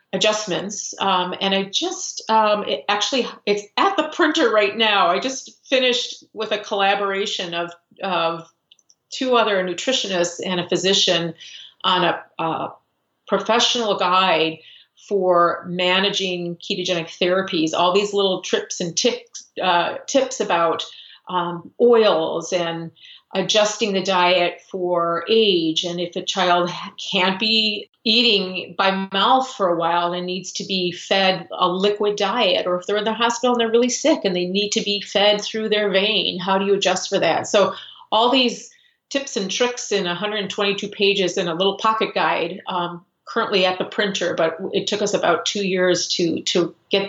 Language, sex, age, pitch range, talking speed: English, female, 40-59, 180-215 Hz, 165 wpm